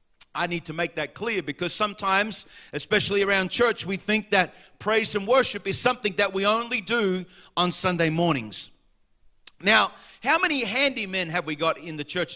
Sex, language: male, English